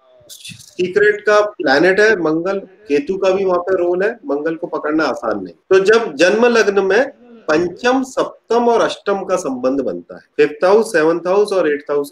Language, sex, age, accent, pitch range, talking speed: Hindi, male, 30-49, native, 150-215 Hz, 185 wpm